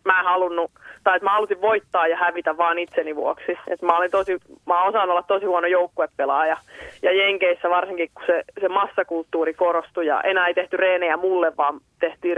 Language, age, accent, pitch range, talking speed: Finnish, 20-39, native, 165-185 Hz, 185 wpm